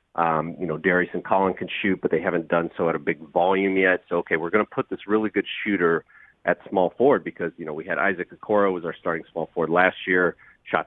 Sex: male